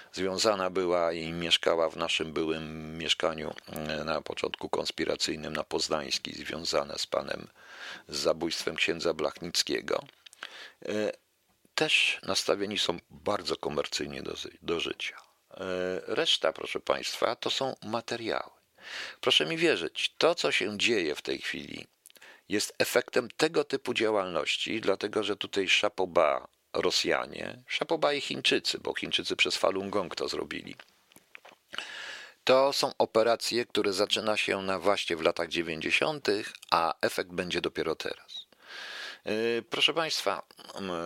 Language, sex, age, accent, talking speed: Polish, male, 50-69, native, 120 wpm